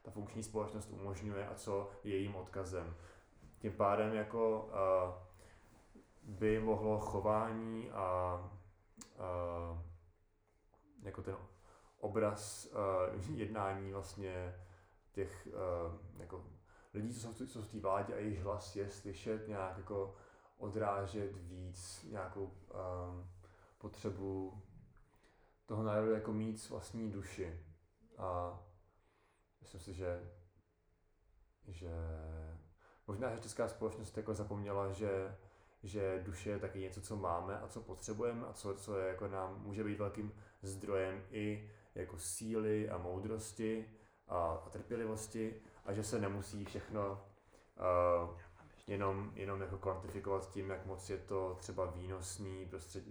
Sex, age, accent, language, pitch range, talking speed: male, 20-39, native, Czech, 90-105 Hz, 120 wpm